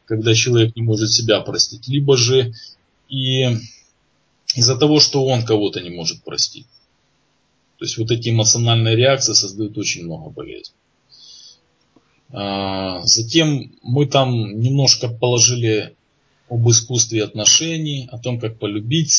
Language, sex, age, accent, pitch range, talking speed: Russian, male, 20-39, native, 115-140 Hz, 120 wpm